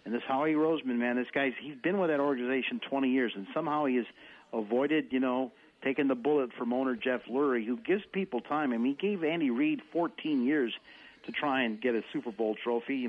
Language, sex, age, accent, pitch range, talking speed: English, male, 50-69, American, 115-150 Hz, 225 wpm